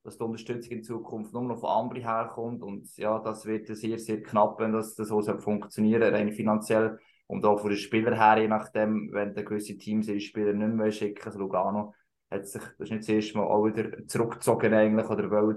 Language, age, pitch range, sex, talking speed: German, 20-39, 110-135 Hz, male, 220 wpm